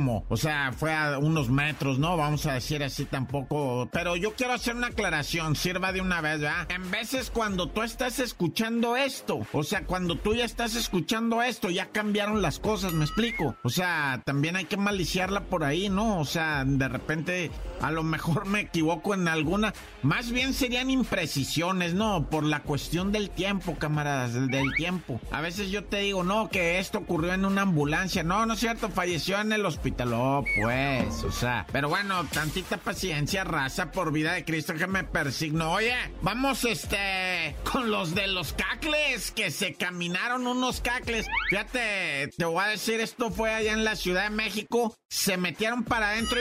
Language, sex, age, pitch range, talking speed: Spanish, male, 50-69, 155-210 Hz, 185 wpm